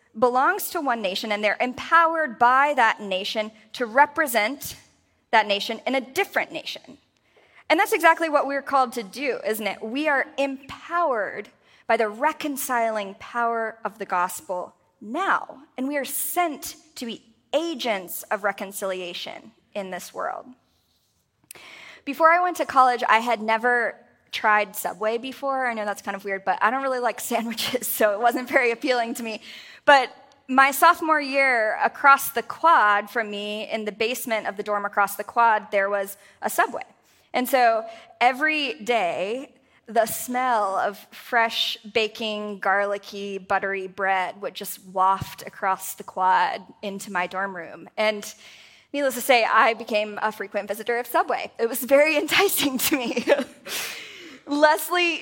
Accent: American